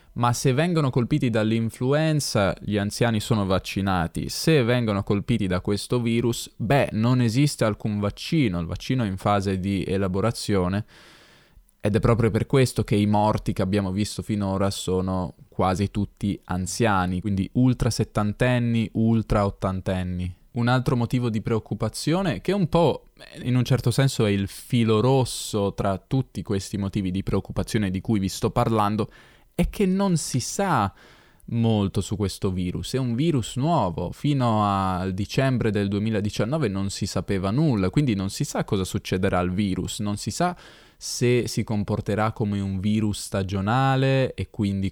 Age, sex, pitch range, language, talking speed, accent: 10-29, male, 100-125 Hz, Italian, 160 wpm, native